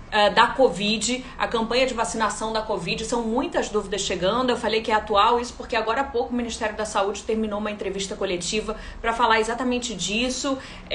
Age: 30-49